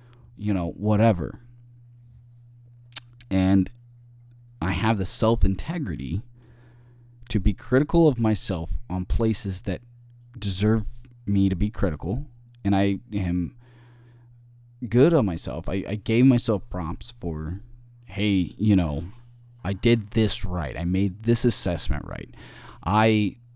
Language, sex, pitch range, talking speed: English, male, 95-120 Hz, 115 wpm